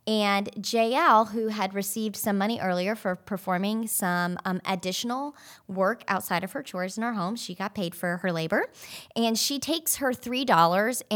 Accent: American